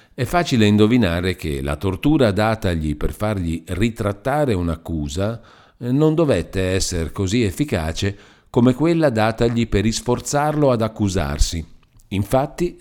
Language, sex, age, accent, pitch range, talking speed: Italian, male, 50-69, native, 90-125 Hz, 110 wpm